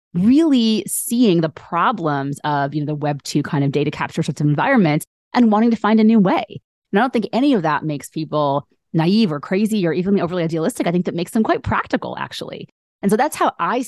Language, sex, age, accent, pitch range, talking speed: English, female, 30-49, American, 150-200 Hz, 225 wpm